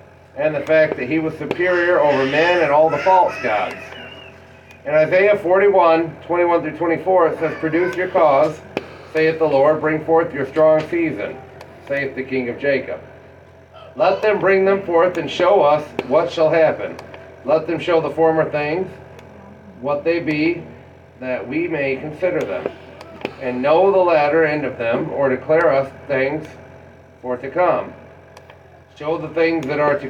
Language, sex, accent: English, male, American